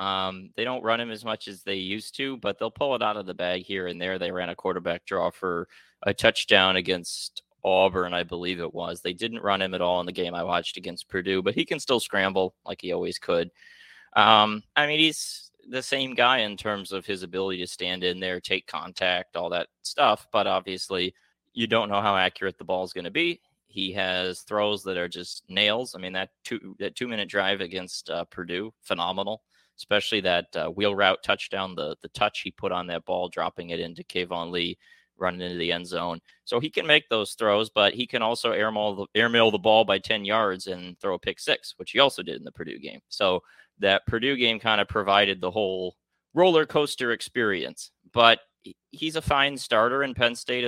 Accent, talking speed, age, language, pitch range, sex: American, 220 wpm, 20-39, English, 90-115 Hz, male